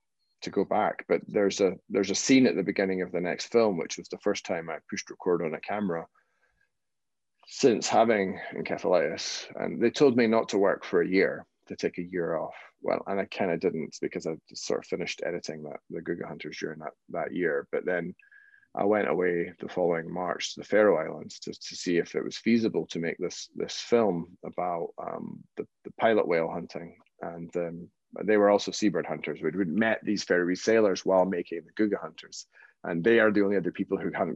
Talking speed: 215 wpm